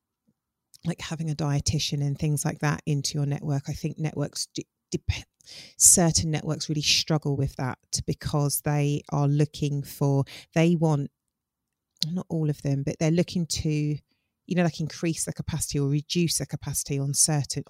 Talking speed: 165 wpm